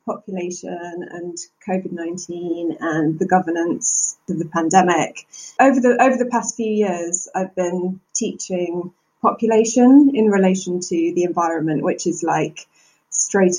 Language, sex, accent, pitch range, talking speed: English, female, British, 170-205 Hz, 130 wpm